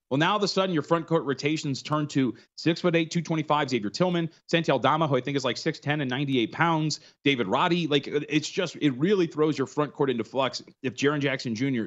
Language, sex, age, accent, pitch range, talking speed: English, male, 30-49, American, 130-170 Hz, 225 wpm